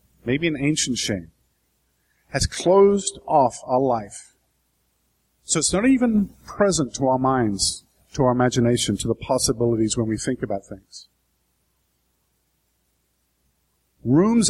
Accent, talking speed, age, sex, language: American, 120 wpm, 50-69, male, English